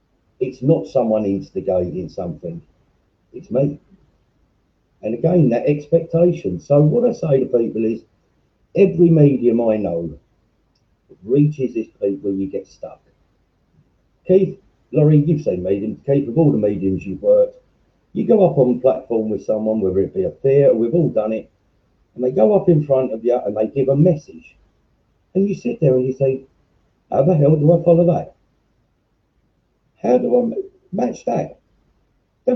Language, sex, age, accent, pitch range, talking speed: English, male, 50-69, British, 110-170 Hz, 165 wpm